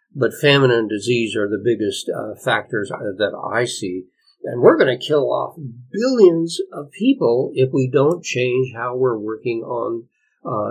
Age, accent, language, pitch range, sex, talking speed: 60-79, American, English, 125-180 Hz, male, 170 wpm